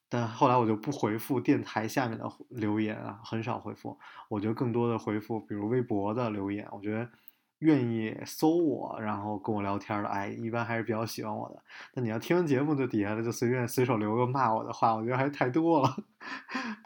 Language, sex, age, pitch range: Chinese, male, 20-39, 105-125 Hz